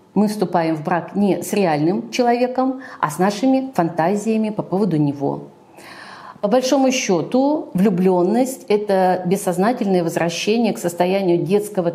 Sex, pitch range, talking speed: female, 170-205 Hz, 125 wpm